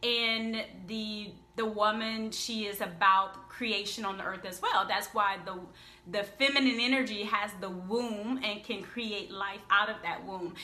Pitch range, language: 185-225 Hz, English